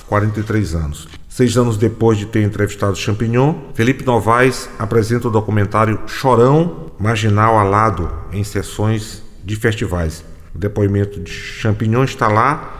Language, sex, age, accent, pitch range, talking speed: Portuguese, male, 40-59, Brazilian, 100-125 Hz, 125 wpm